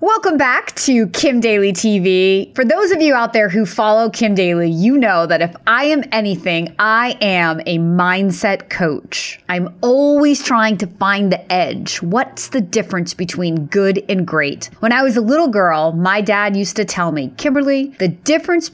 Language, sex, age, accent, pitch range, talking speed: English, female, 30-49, American, 190-290 Hz, 185 wpm